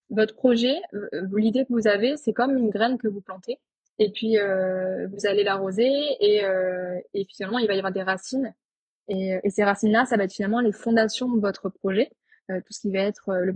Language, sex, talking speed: French, female, 220 wpm